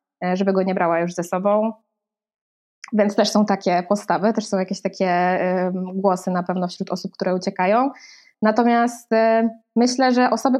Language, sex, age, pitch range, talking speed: Polish, female, 20-39, 200-230 Hz, 155 wpm